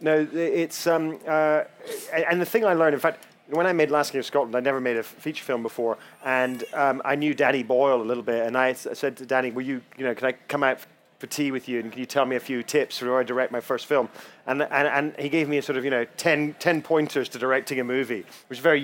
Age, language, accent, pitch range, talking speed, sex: 30-49, English, British, 130-155 Hz, 290 wpm, male